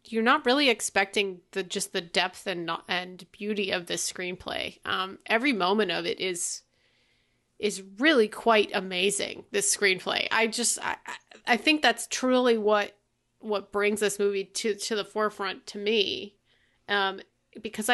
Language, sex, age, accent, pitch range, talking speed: English, female, 30-49, American, 190-225 Hz, 155 wpm